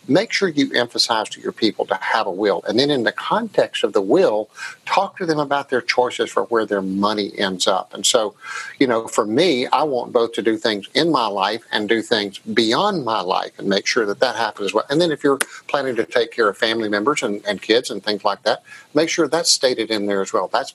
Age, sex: 50-69, male